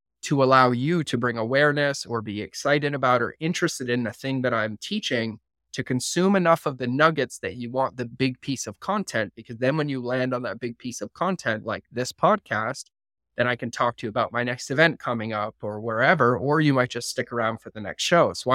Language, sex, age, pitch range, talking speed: English, male, 20-39, 115-145 Hz, 230 wpm